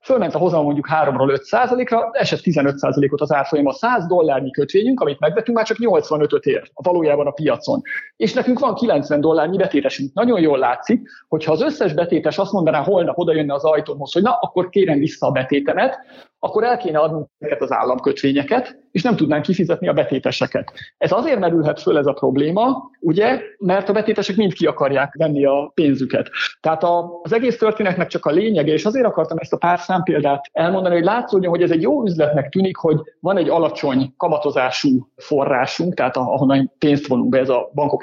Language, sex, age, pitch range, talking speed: Hungarian, male, 50-69, 150-215 Hz, 180 wpm